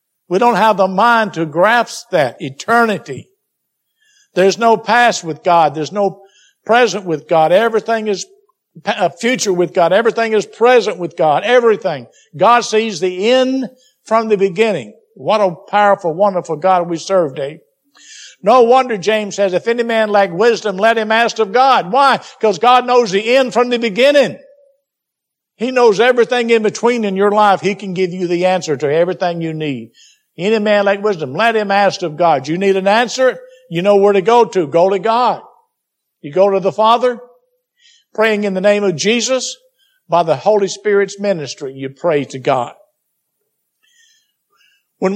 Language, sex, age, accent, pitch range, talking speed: English, male, 60-79, American, 185-235 Hz, 175 wpm